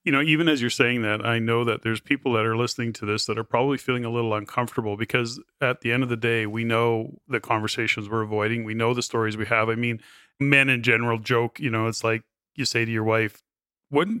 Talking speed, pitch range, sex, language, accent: 245 wpm, 115-135 Hz, male, English, American